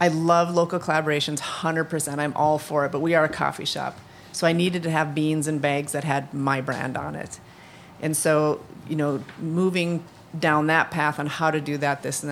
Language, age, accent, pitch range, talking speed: English, 30-49, American, 145-160 Hz, 220 wpm